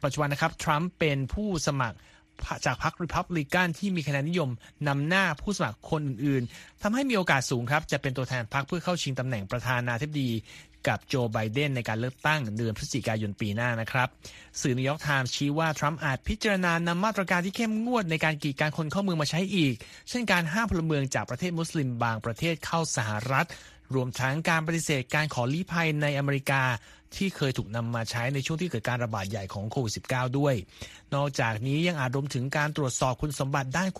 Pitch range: 125-170 Hz